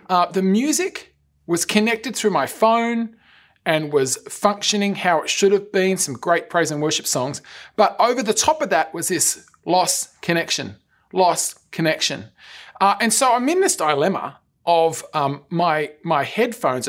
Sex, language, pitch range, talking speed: male, English, 150-220 Hz, 165 wpm